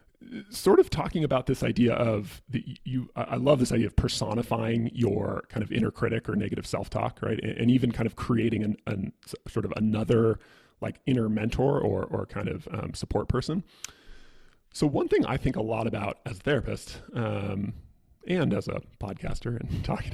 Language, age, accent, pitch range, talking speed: English, 30-49, American, 110-135 Hz, 185 wpm